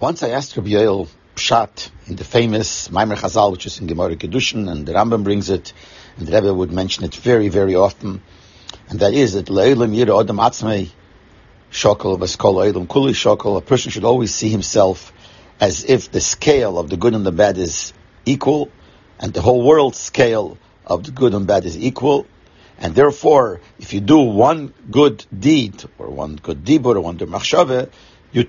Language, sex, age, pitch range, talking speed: English, male, 60-79, 95-130 Hz, 175 wpm